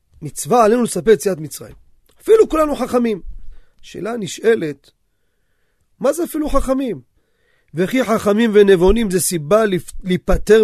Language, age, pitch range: Hebrew, 40-59, 165-235 Hz